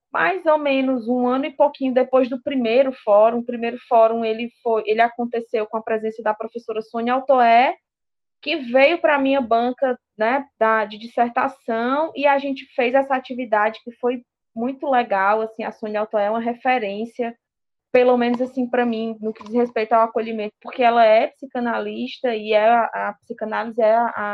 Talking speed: 185 wpm